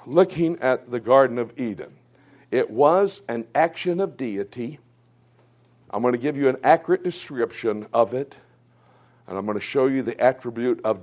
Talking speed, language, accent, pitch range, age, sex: 170 wpm, English, American, 115-150 Hz, 60-79, male